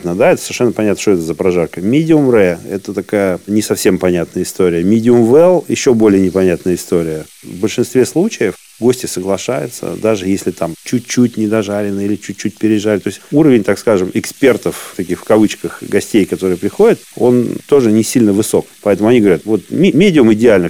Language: Russian